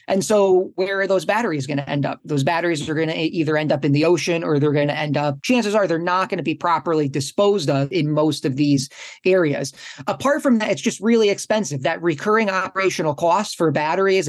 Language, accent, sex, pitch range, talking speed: English, American, male, 150-190 Hz, 235 wpm